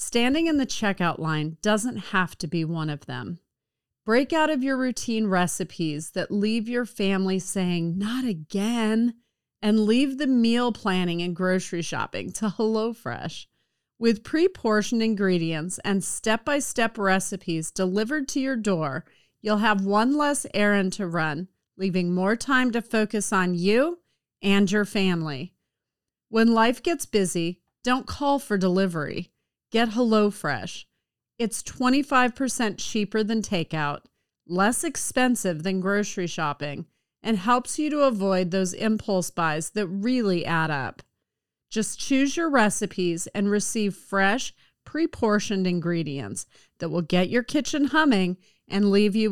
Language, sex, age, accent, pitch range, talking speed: English, female, 30-49, American, 180-235 Hz, 135 wpm